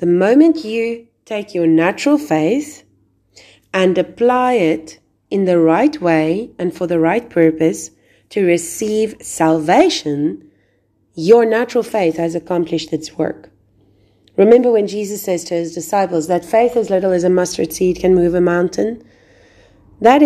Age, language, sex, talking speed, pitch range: 30-49, English, female, 145 wpm, 165-235 Hz